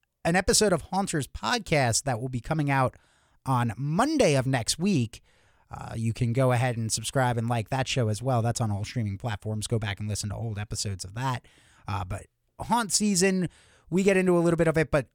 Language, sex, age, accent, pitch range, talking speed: English, male, 30-49, American, 125-170 Hz, 220 wpm